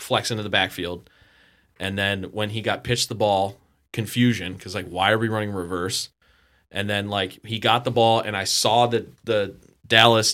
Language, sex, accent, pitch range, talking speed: English, male, American, 100-120 Hz, 190 wpm